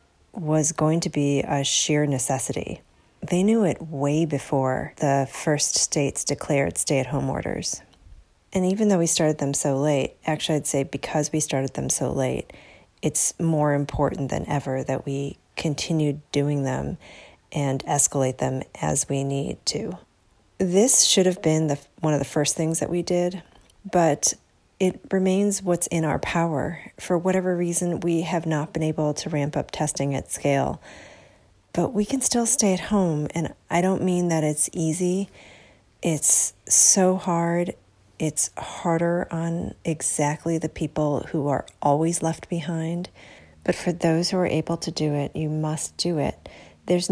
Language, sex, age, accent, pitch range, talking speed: English, female, 30-49, American, 140-175 Hz, 165 wpm